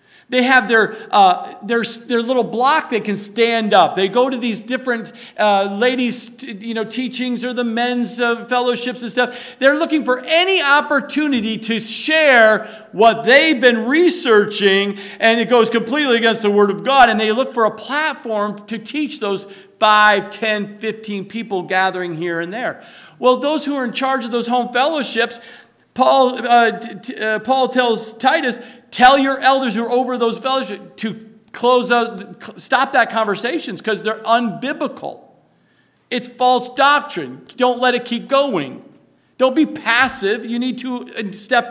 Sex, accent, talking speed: male, American, 165 wpm